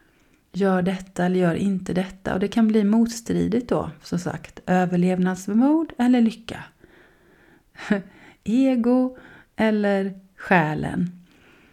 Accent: native